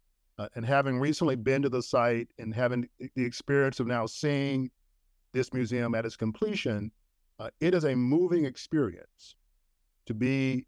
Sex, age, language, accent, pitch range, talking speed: male, 50-69, English, American, 105-135 Hz, 155 wpm